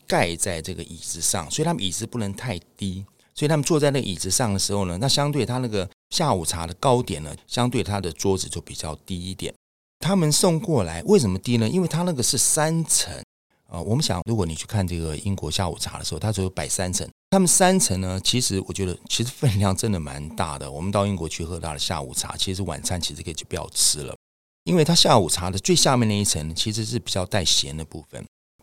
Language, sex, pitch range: Chinese, male, 85-125 Hz